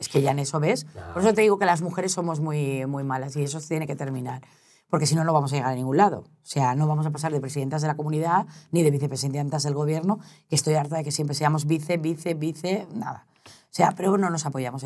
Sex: female